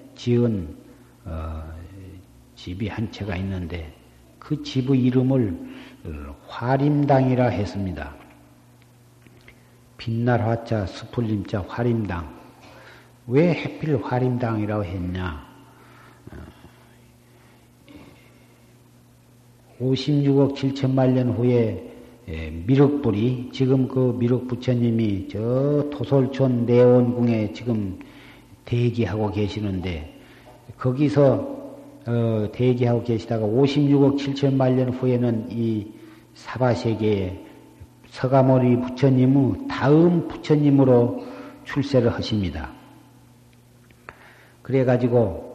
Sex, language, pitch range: male, Korean, 105-130 Hz